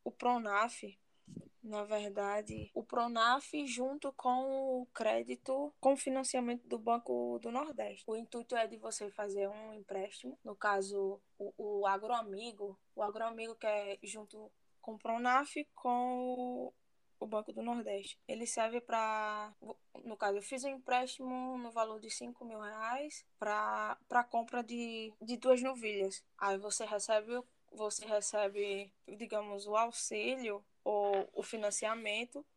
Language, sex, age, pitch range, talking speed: Portuguese, female, 10-29, 205-245 Hz, 145 wpm